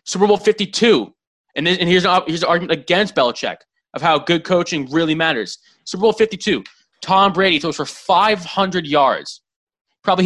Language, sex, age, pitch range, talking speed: English, male, 20-39, 150-190 Hz, 170 wpm